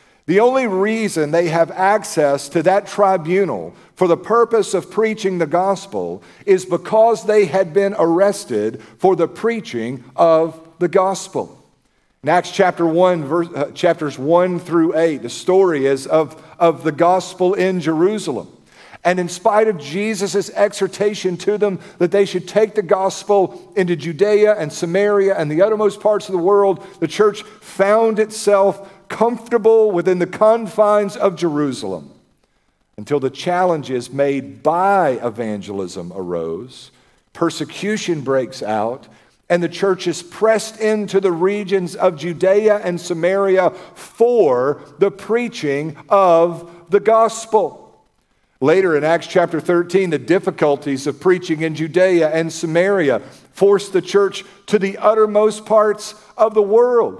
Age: 50-69